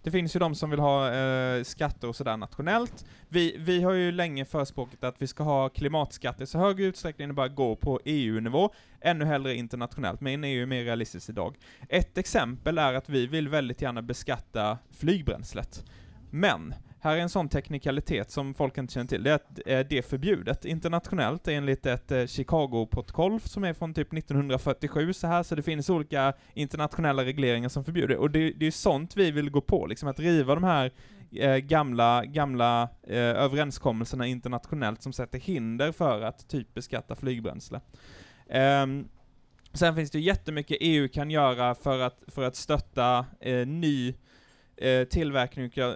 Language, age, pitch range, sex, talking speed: Swedish, 20-39, 125-160 Hz, male, 165 wpm